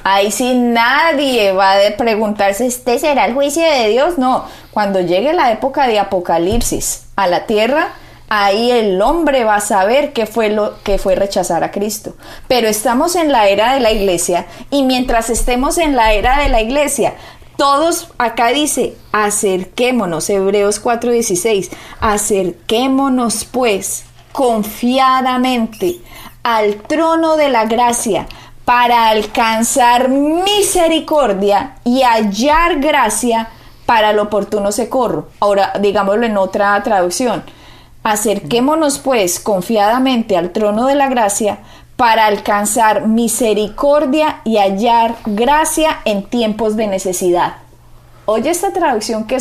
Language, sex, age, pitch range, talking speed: Spanish, female, 20-39, 205-255 Hz, 125 wpm